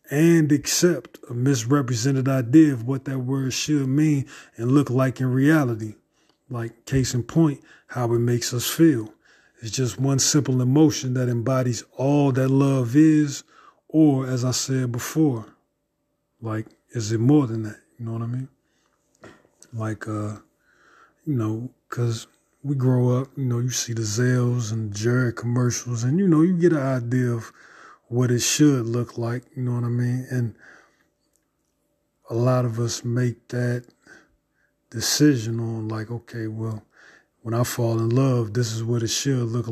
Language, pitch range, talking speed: English, 115-140 Hz, 165 wpm